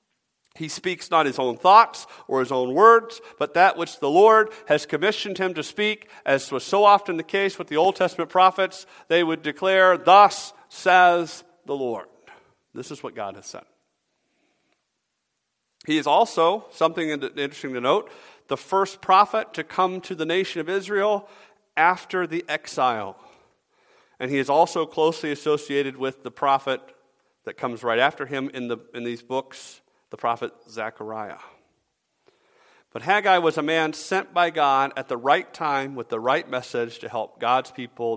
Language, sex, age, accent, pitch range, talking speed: English, male, 50-69, American, 135-190 Hz, 165 wpm